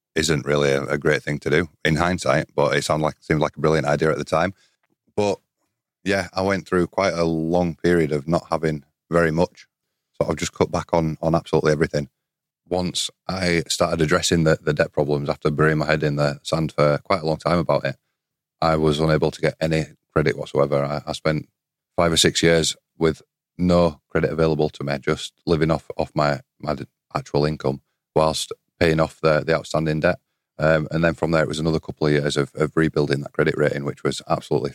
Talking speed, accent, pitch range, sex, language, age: 210 wpm, British, 75-85 Hz, male, English, 30-49